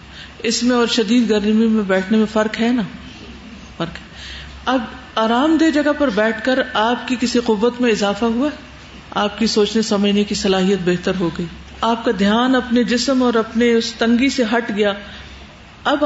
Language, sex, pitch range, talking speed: Urdu, female, 210-270 Hz, 185 wpm